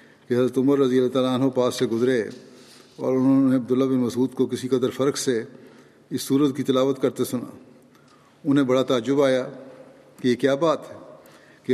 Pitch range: 120-135 Hz